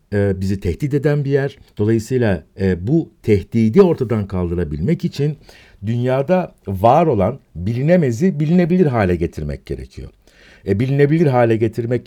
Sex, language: male, Turkish